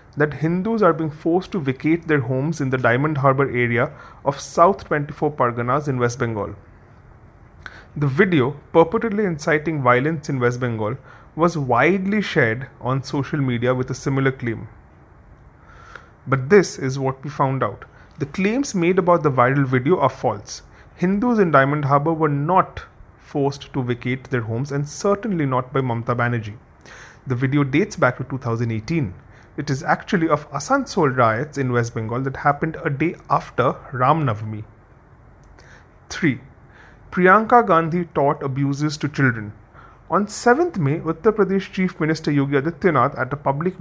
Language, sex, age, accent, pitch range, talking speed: English, male, 30-49, Indian, 125-170 Hz, 155 wpm